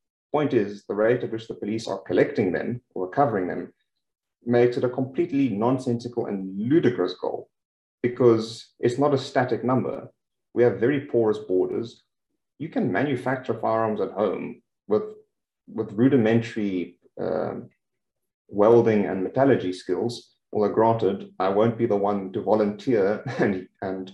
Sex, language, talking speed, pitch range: male, English, 145 wpm, 100-125 Hz